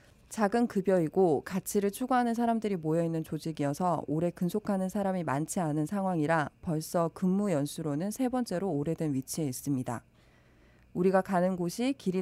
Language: Korean